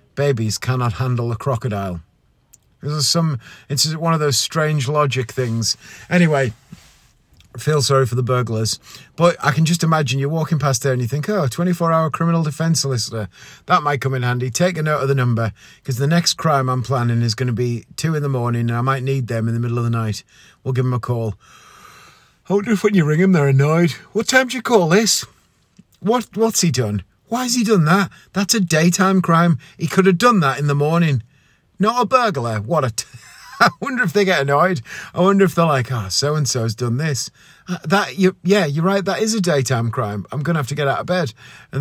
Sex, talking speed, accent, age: male, 230 wpm, British, 30-49